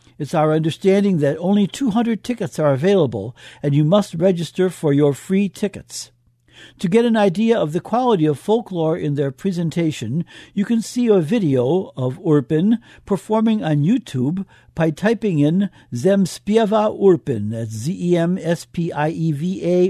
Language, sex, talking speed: English, male, 140 wpm